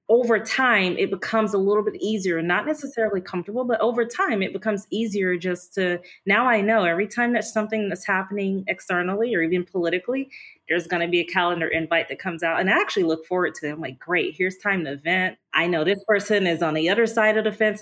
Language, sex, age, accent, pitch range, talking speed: English, female, 20-39, American, 175-215 Hz, 230 wpm